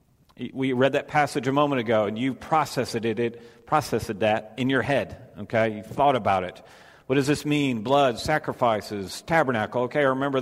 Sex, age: male, 50-69